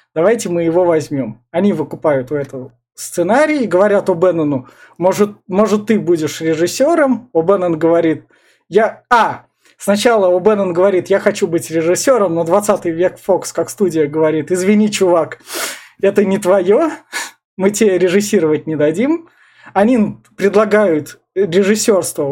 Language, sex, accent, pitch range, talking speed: Russian, male, native, 170-215 Hz, 135 wpm